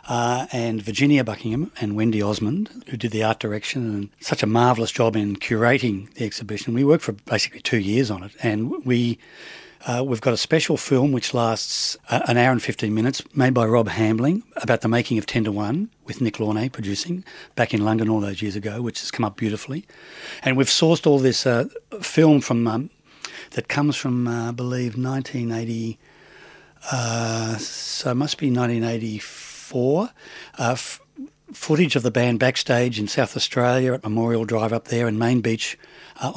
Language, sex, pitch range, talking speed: English, male, 110-130 Hz, 190 wpm